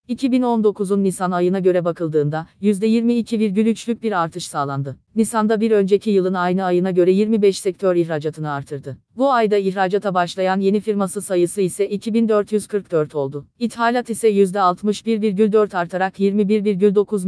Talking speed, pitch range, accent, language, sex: 120 wpm, 180-220 Hz, native, Turkish, female